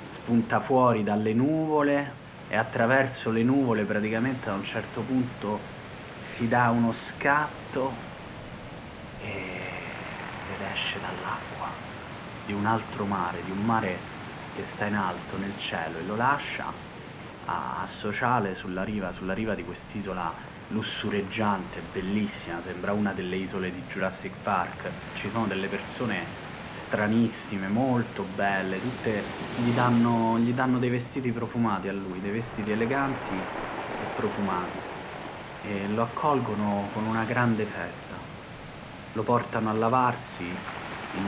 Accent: native